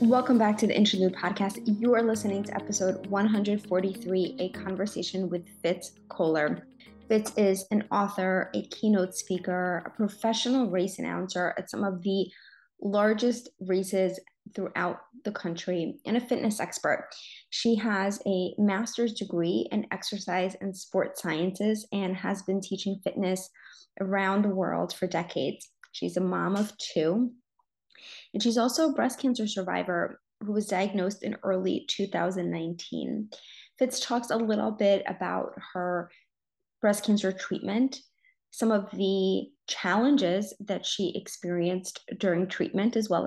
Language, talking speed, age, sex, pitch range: English, 140 wpm, 20-39, female, 185-225 Hz